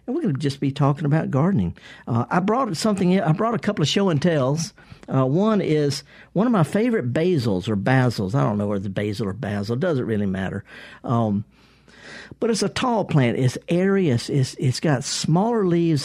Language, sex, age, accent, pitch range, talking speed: English, male, 50-69, American, 125-180 Hz, 215 wpm